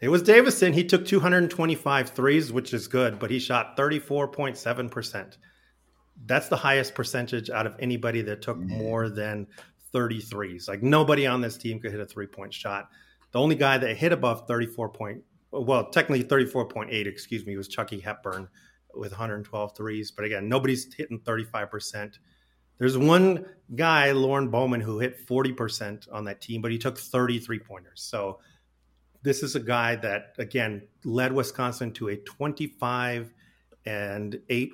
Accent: American